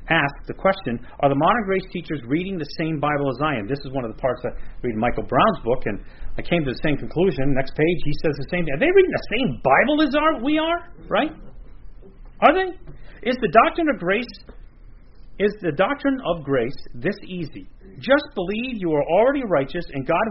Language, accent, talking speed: English, American, 220 wpm